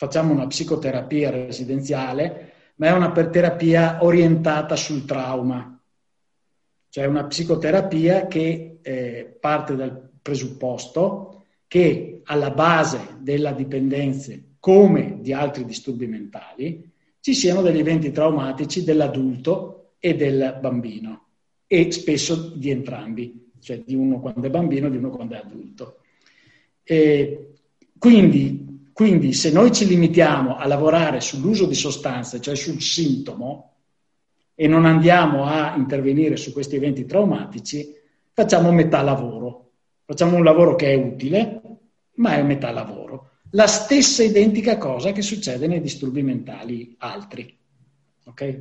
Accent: native